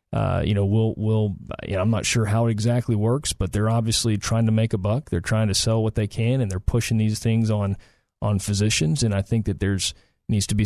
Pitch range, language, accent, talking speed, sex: 95-115 Hz, English, American, 240 wpm, male